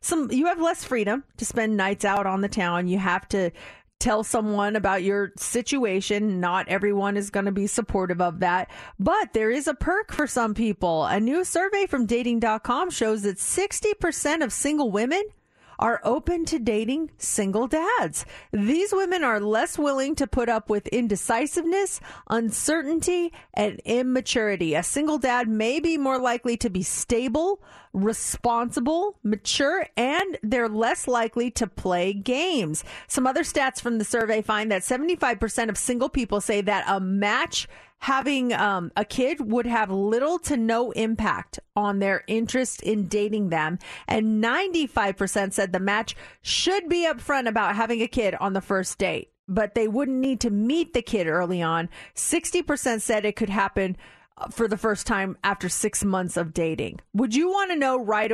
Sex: female